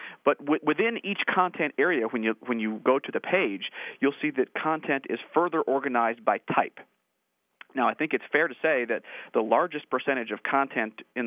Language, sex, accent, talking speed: English, male, American, 190 wpm